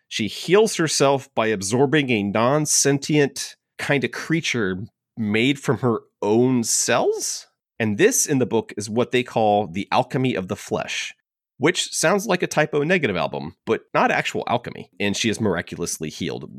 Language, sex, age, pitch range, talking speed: English, male, 30-49, 100-135 Hz, 165 wpm